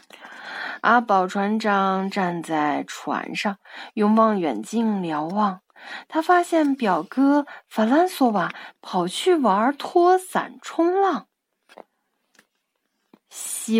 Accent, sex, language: native, female, Chinese